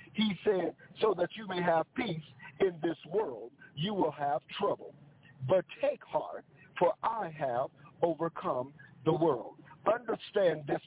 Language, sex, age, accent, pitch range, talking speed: English, male, 50-69, American, 155-195 Hz, 145 wpm